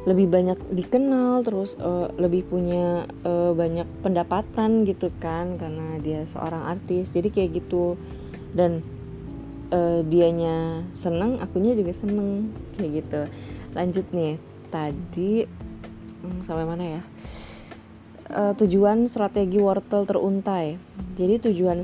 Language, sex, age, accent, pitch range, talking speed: Indonesian, female, 20-39, native, 165-210 Hz, 115 wpm